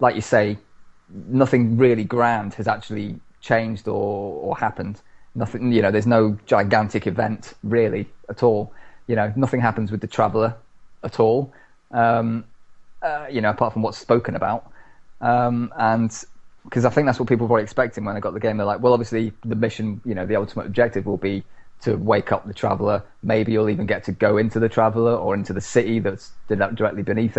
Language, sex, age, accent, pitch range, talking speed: English, male, 20-39, British, 105-120 Hz, 195 wpm